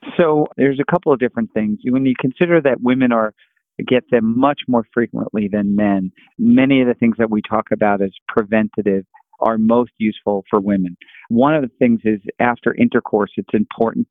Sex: male